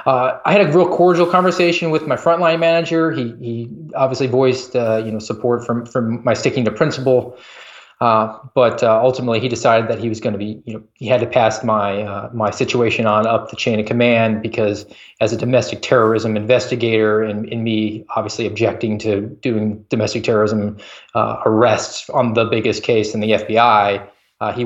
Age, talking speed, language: 20-39, 190 wpm, English